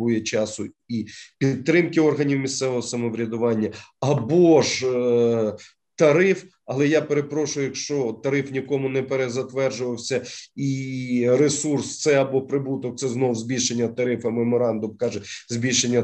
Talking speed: 110 wpm